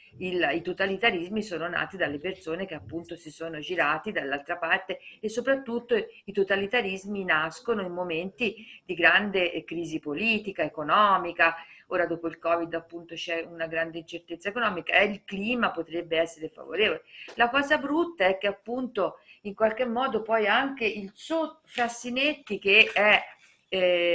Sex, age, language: female, 50-69, Italian